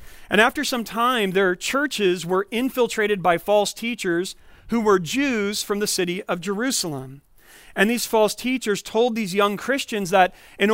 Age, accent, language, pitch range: 40-59, American, English, 190-240 Hz